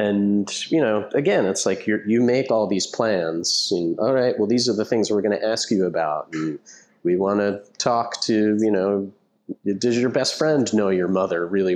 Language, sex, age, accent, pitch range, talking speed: English, male, 40-59, American, 90-115 Hz, 205 wpm